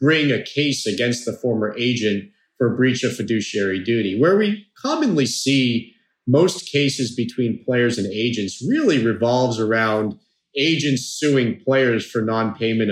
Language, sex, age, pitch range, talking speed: English, male, 40-59, 110-140 Hz, 140 wpm